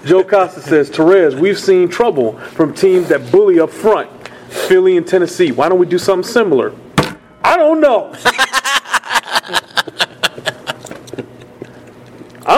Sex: male